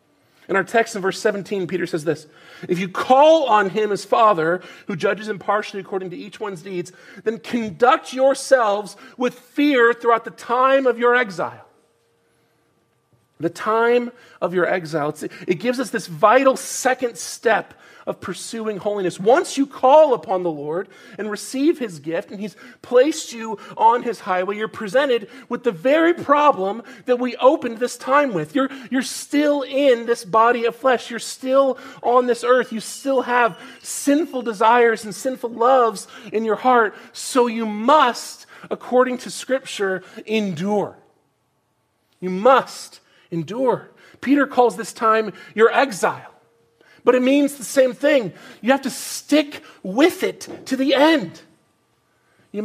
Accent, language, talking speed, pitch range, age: American, English, 155 wpm, 200-260 Hz, 40-59